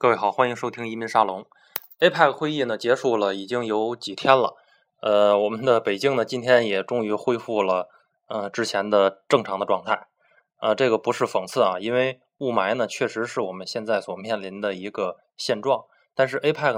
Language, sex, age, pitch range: Chinese, male, 20-39, 100-120 Hz